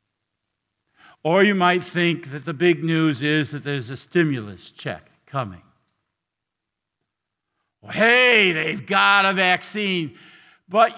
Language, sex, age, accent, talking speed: English, male, 50-69, American, 115 wpm